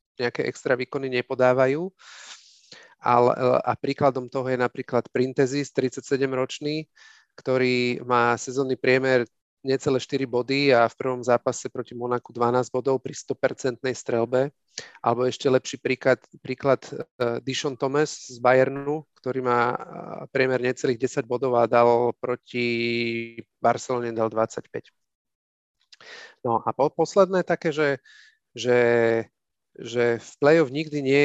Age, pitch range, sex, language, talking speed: 40-59, 120-135 Hz, male, Slovak, 125 wpm